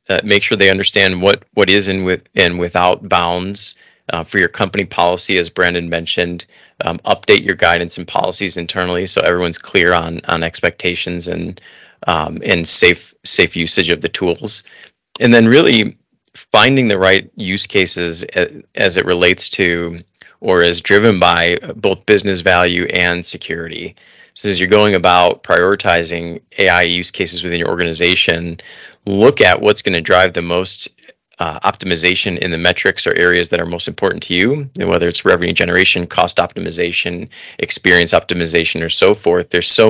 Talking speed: 165 wpm